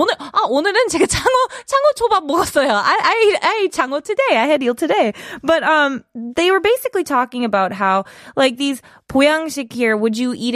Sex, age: female, 20-39